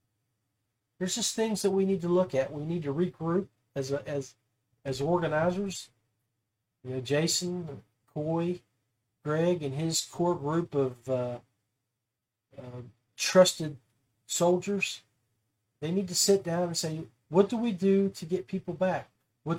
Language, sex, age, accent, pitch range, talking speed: English, male, 40-59, American, 120-175 Hz, 145 wpm